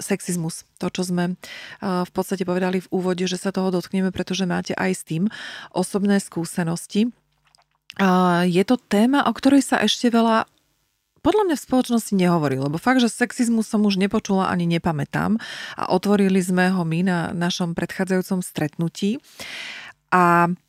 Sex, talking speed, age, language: female, 150 wpm, 30-49, Slovak